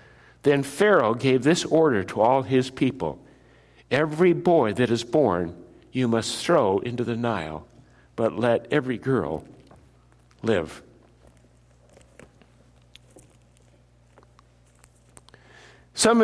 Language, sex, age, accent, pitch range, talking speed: English, male, 60-79, American, 115-155 Hz, 95 wpm